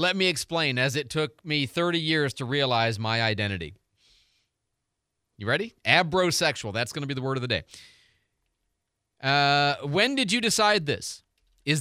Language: English